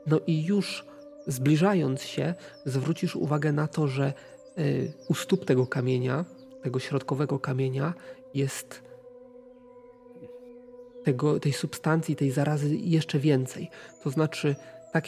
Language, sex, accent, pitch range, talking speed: Polish, male, native, 140-180 Hz, 105 wpm